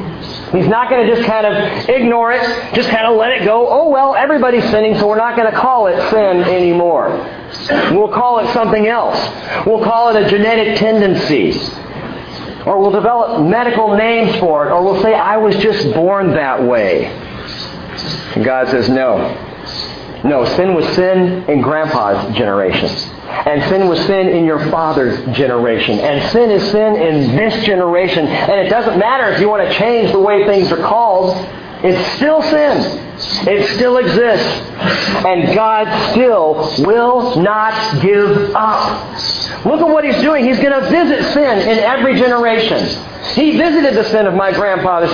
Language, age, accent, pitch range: English, 50-69, American, 175-240 Hz